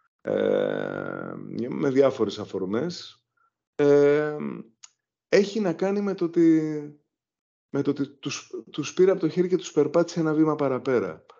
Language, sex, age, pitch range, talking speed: Greek, male, 30-49, 105-165 Hz, 135 wpm